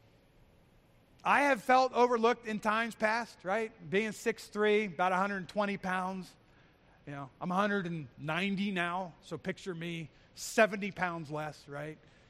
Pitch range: 185-280 Hz